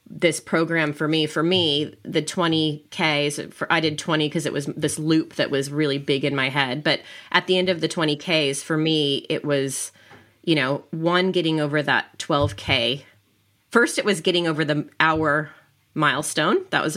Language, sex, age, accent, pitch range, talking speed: English, female, 20-39, American, 145-165 Hz, 185 wpm